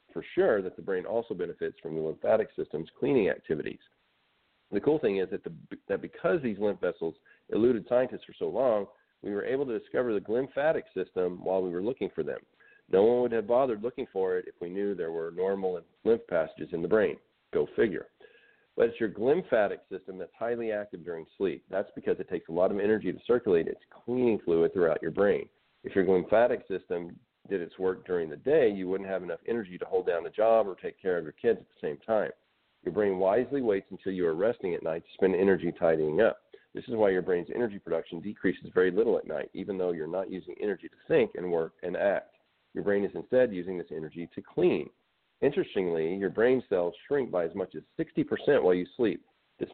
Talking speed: 220 wpm